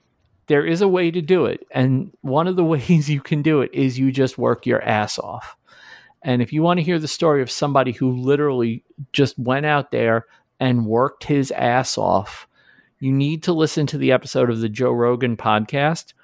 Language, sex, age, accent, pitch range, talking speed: English, male, 50-69, American, 115-145 Hz, 205 wpm